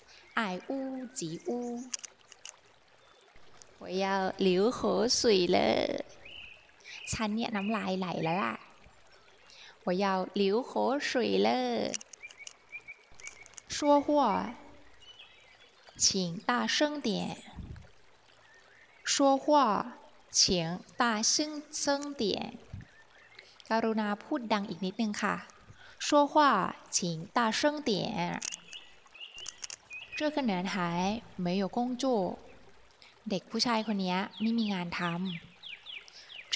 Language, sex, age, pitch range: Thai, female, 20-39, 185-255 Hz